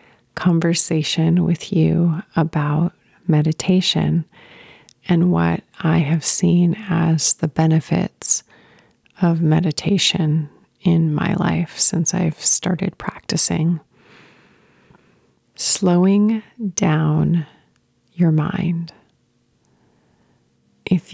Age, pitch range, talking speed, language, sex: 30-49, 150-180 Hz, 75 wpm, English, female